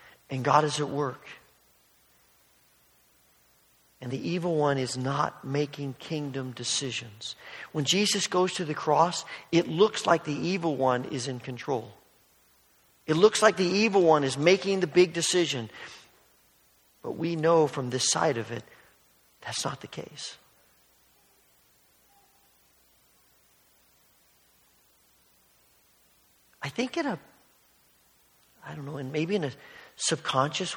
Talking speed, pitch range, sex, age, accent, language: 125 wpm, 135-180 Hz, male, 50-69, American, English